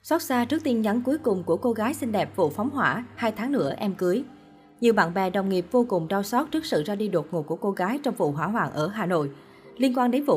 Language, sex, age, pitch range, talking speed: Vietnamese, female, 20-39, 185-240 Hz, 285 wpm